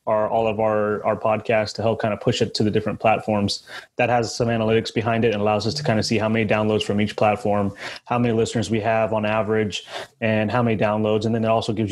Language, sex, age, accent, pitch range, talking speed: English, male, 20-39, American, 105-120 Hz, 255 wpm